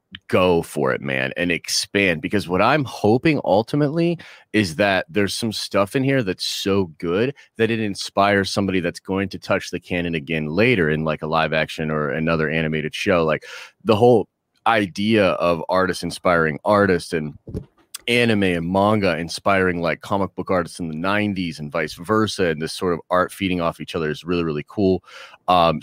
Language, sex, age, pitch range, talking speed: English, male, 30-49, 85-105 Hz, 185 wpm